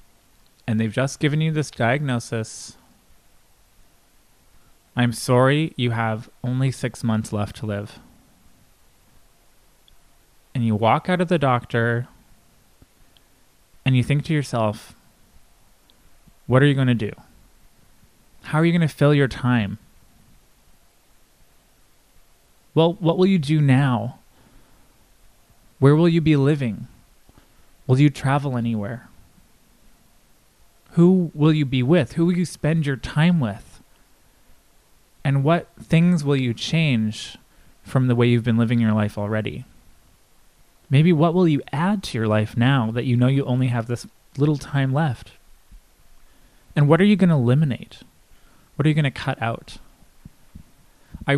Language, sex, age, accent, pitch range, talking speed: English, male, 20-39, American, 115-150 Hz, 140 wpm